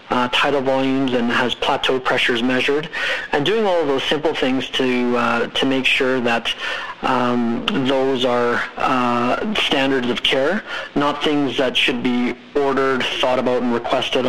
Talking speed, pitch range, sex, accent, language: 155 wpm, 125-135 Hz, male, American, English